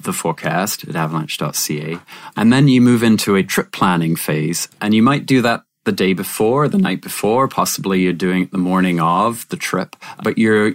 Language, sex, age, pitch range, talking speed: English, male, 30-49, 90-115 Hz, 195 wpm